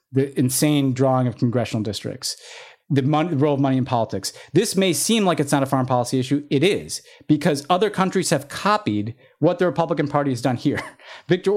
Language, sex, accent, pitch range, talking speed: English, male, American, 130-160 Hz, 200 wpm